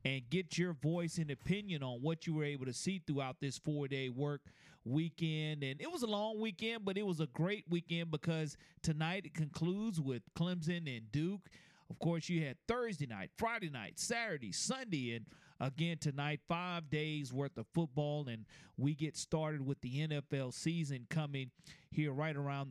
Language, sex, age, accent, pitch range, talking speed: English, male, 40-59, American, 140-170 Hz, 180 wpm